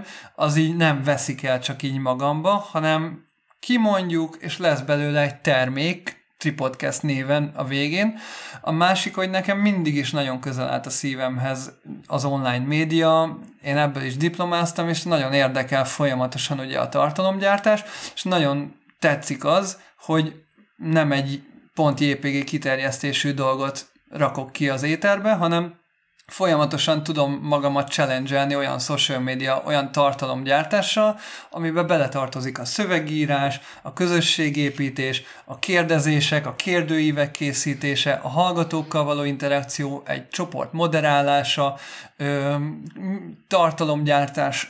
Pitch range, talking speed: 140-170 Hz, 120 wpm